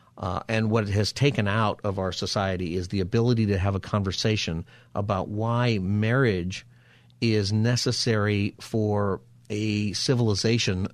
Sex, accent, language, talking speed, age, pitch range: male, American, English, 135 wpm, 50-69, 100-120 Hz